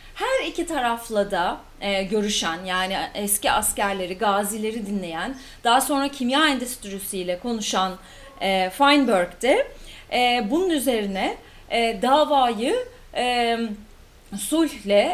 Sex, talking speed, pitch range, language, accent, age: female, 105 wpm, 200-270 Hz, English, Turkish, 40-59